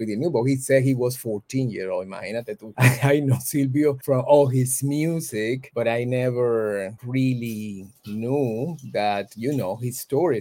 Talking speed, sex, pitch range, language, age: 155 wpm, male, 110-140 Hz, English, 30-49